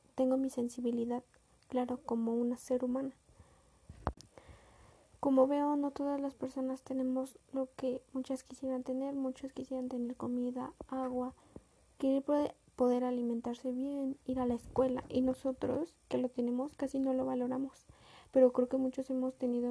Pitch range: 245-265 Hz